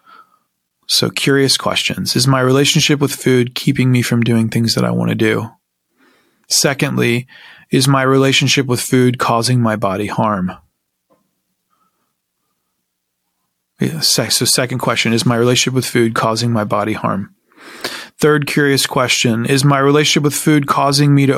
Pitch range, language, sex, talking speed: 110-140 Hz, English, male, 145 wpm